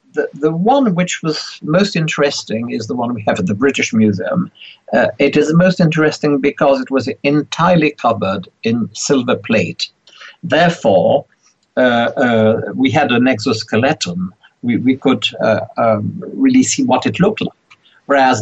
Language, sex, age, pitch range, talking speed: English, male, 60-79, 110-155 Hz, 155 wpm